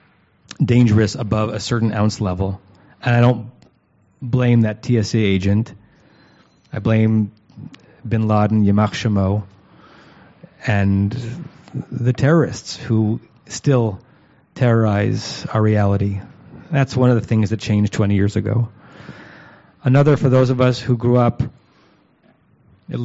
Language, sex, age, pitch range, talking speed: English, male, 30-49, 105-125 Hz, 115 wpm